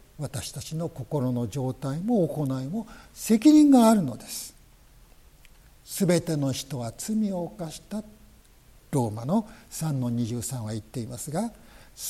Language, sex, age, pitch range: Japanese, male, 60-79, 130-200 Hz